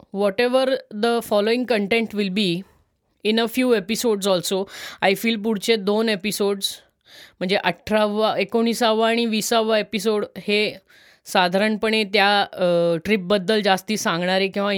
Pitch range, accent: 195-230 Hz, native